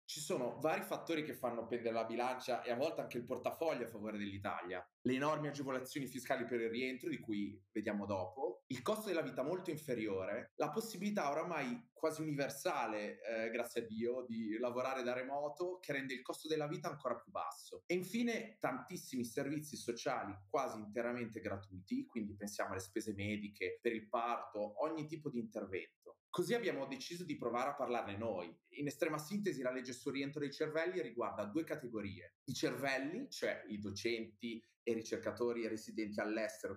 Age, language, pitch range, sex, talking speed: 30-49, Italian, 110-155 Hz, male, 175 wpm